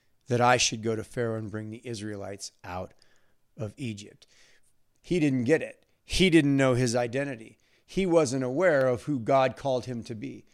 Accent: American